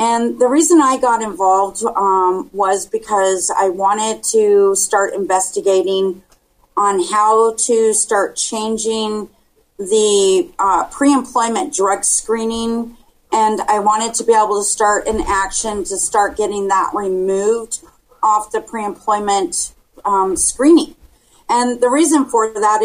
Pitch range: 195-235 Hz